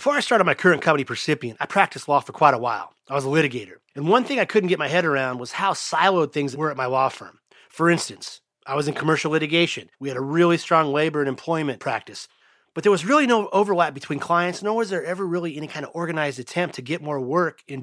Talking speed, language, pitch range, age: 250 wpm, English, 135-175 Hz, 30-49